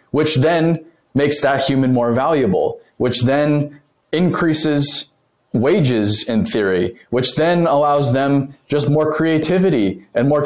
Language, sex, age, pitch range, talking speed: English, male, 20-39, 115-145 Hz, 125 wpm